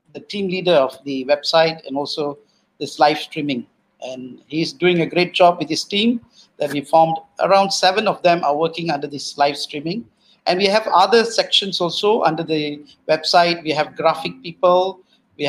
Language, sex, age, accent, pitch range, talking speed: English, male, 50-69, Indian, 155-190 Hz, 180 wpm